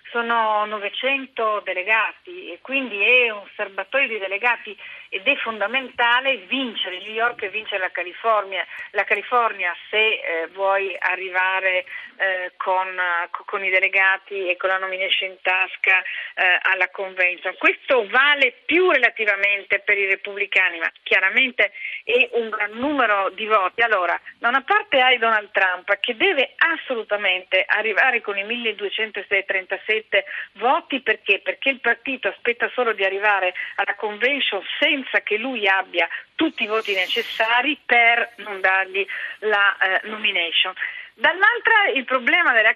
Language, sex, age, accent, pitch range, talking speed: Italian, female, 40-59, native, 190-260 Hz, 135 wpm